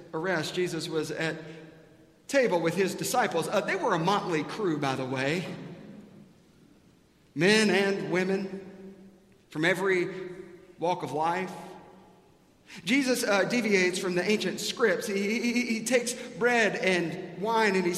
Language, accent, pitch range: English, American, 155-200 Hz